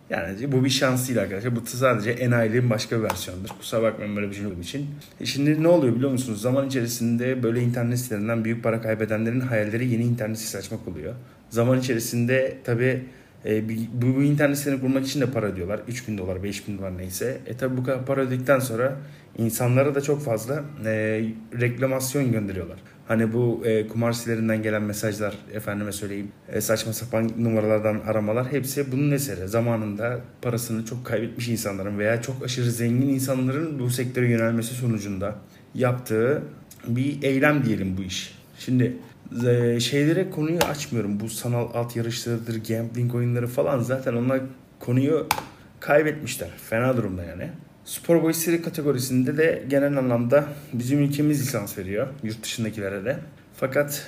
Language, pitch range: Turkish, 110-130 Hz